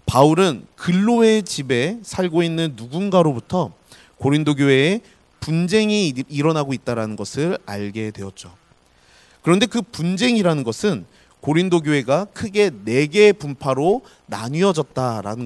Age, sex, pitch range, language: 40-59, male, 125-190 Hz, Korean